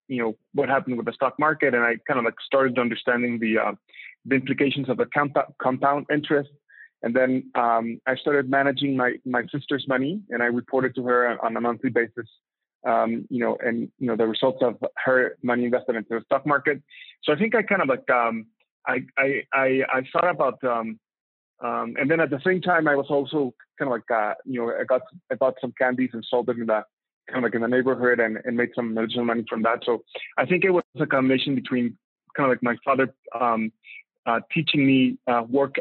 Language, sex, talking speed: English, male, 225 wpm